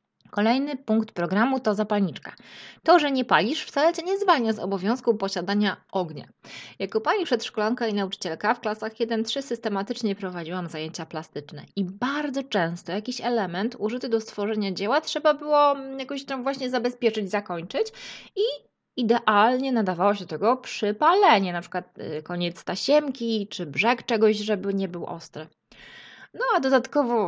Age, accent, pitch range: 20-39, native, 195-250 Hz